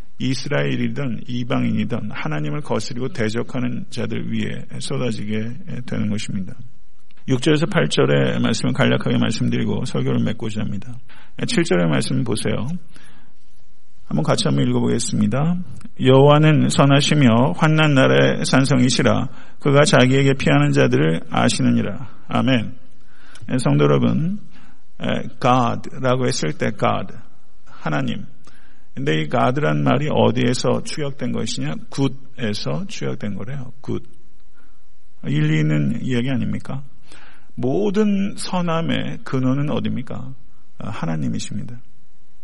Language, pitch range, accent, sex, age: Korean, 105-145 Hz, native, male, 50-69